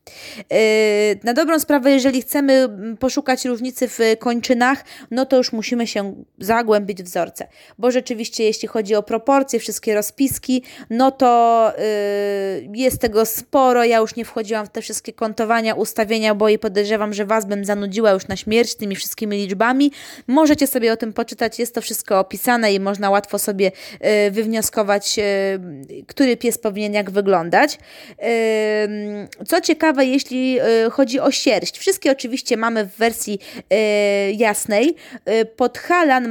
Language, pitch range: Polish, 215-260 Hz